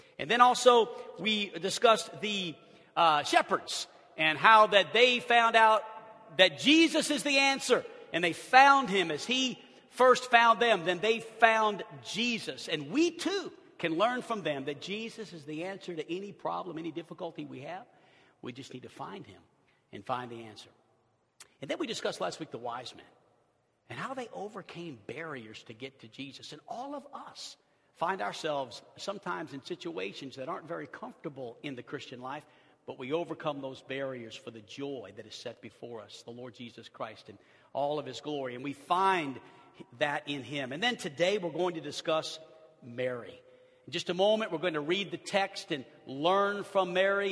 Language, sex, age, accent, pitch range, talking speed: English, male, 50-69, American, 145-215 Hz, 185 wpm